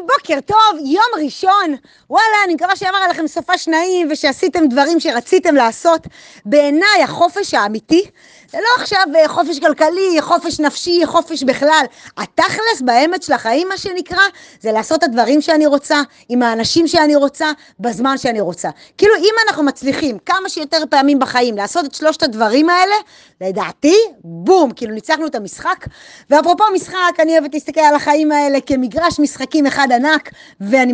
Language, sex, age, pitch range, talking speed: Hebrew, female, 30-49, 240-335 Hz, 150 wpm